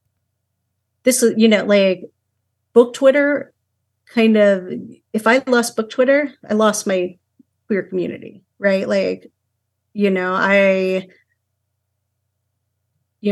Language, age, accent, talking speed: English, 40-59, American, 110 wpm